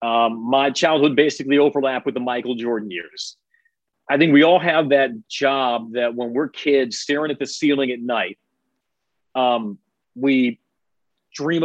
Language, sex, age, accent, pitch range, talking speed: English, male, 40-59, American, 125-145 Hz, 155 wpm